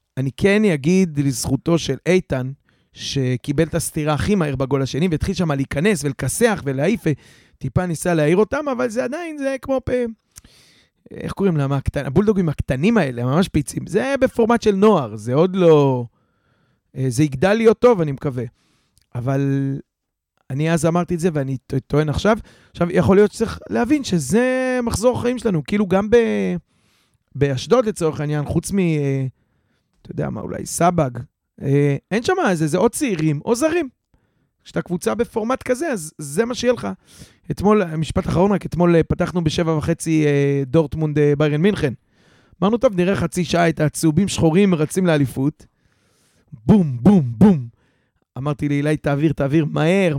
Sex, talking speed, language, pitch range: male, 155 wpm, Hebrew, 140-200 Hz